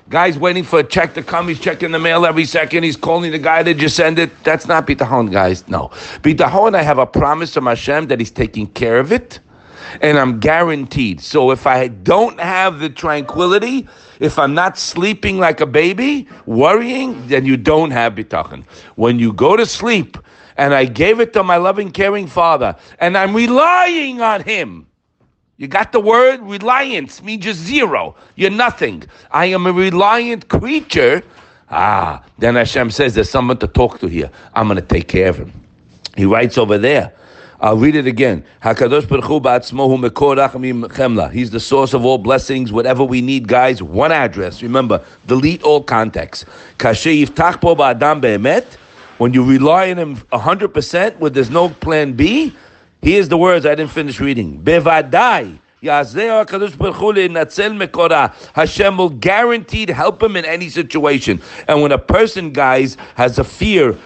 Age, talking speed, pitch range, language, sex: 50-69, 160 wpm, 130-185 Hz, English, male